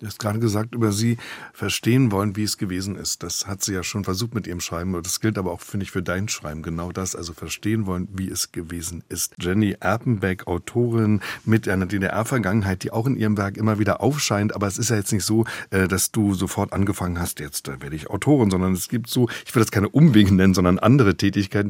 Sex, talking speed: male, 225 wpm